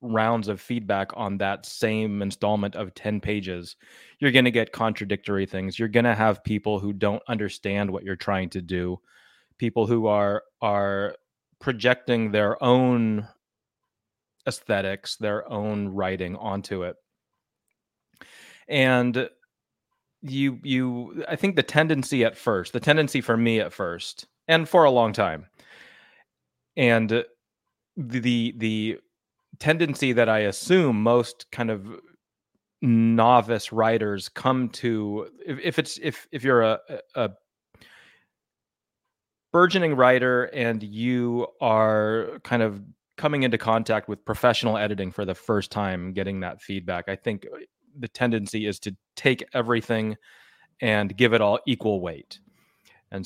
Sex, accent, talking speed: male, American, 135 wpm